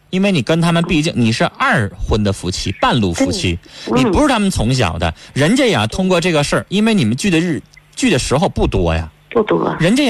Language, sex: Chinese, male